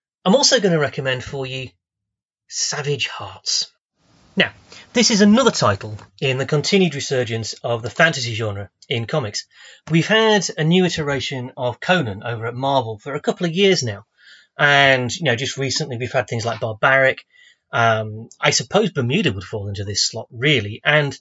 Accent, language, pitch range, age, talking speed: British, English, 120-165 Hz, 30-49, 175 wpm